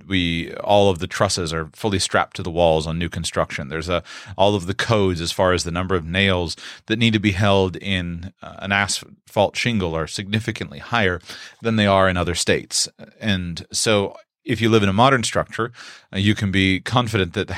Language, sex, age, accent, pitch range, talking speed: English, male, 30-49, American, 85-105 Hz, 205 wpm